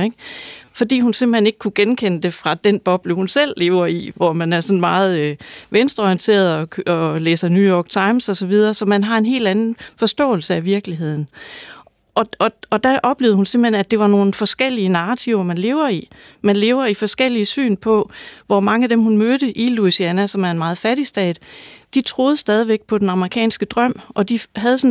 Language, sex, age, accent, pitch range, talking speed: Danish, female, 30-49, native, 185-240 Hz, 200 wpm